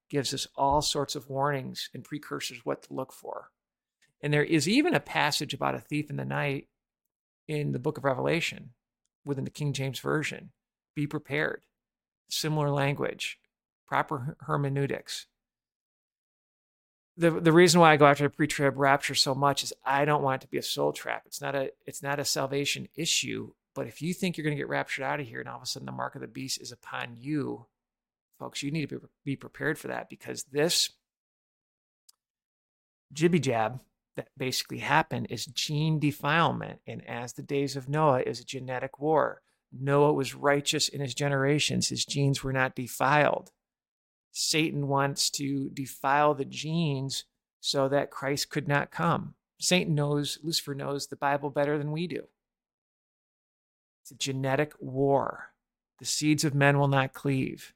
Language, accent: English, American